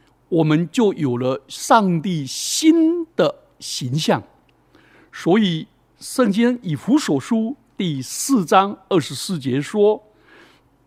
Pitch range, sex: 145-245 Hz, male